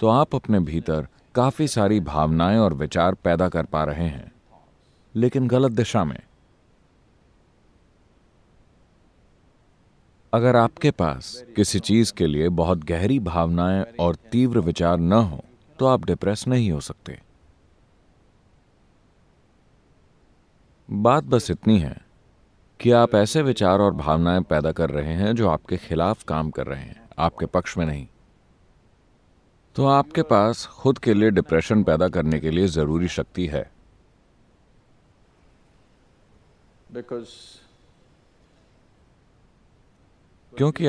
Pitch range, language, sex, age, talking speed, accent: 80-115 Hz, English, male, 40-59, 110 wpm, Indian